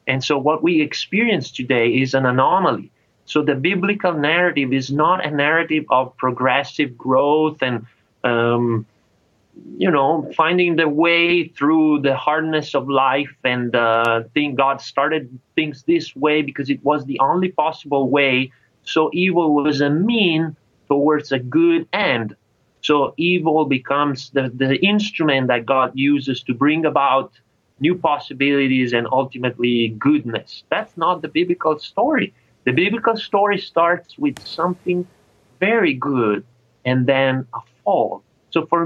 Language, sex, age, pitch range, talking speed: English, male, 30-49, 130-165 Hz, 140 wpm